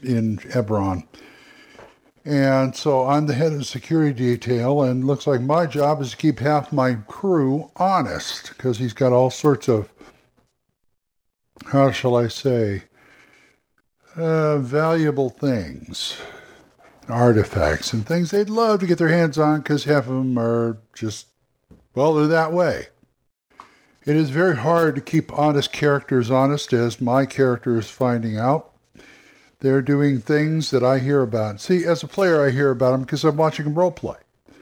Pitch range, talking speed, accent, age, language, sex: 125-155 Hz, 160 wpm, American, 60-79, English, male